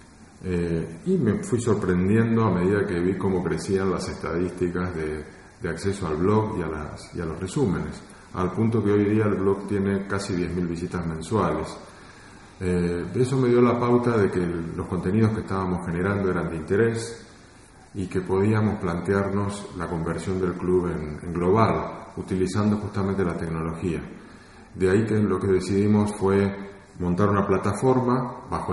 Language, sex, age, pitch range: Spanish, male, 40-59, 90-110 Hz